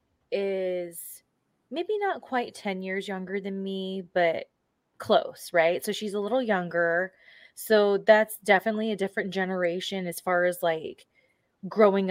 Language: English